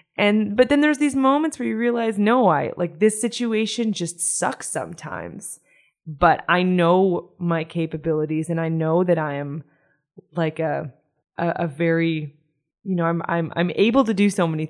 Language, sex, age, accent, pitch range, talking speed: English, female, 20-39, American, 160-185 Hz, 175 wpm